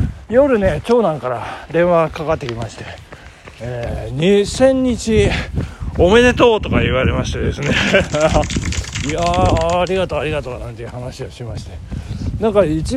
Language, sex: Japanese, male